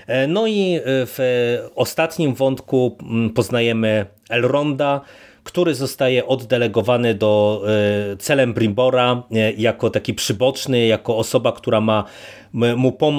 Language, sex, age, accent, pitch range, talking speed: Polish, male, 30-49, native, 110-135 Hz, 95 wpm